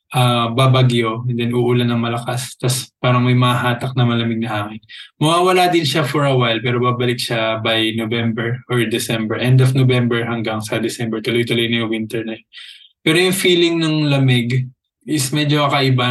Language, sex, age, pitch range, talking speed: Filipino, male, 20-39, 120-135 Hz, 175 wpm